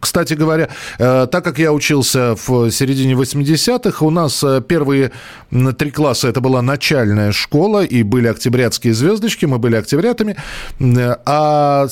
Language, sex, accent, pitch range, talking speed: Russian, male, native, 120-155 Hz, 130 wpm